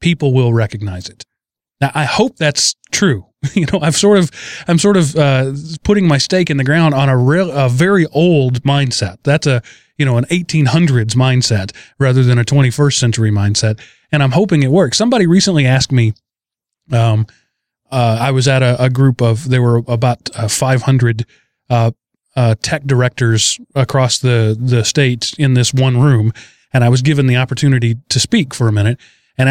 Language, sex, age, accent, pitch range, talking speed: English, male, 30-49, American, 120-160 Hz, 185 wpm